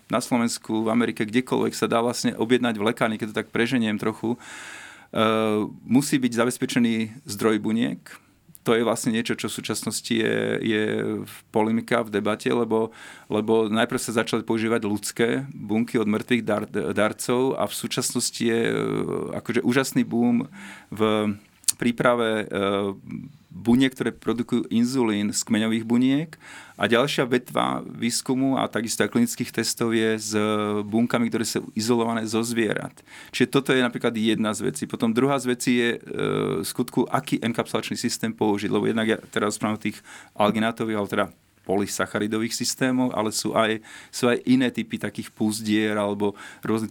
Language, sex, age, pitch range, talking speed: Slovak, male, 40-59, 105-120 Hz, 155 wpm